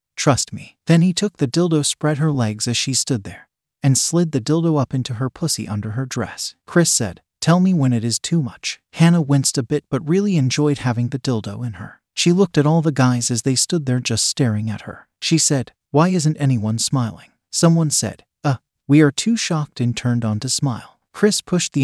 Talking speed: 225 wpm